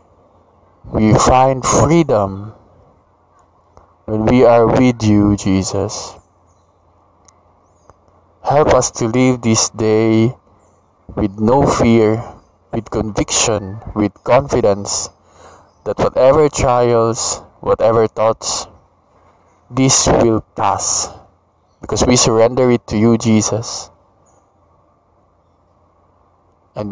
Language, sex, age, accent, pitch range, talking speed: English, male, 20-39, Filipino, 90-110 Hz, 85 wpm